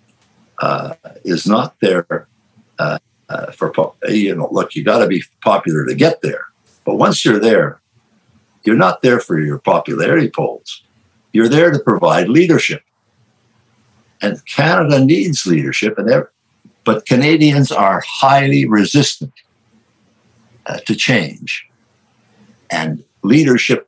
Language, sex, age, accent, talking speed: English, male, 60-79, American, 130 wpm